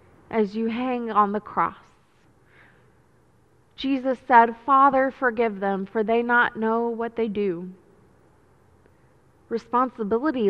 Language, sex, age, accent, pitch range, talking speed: English, female, 20-39, American, 200-255 Hz, 110 wpm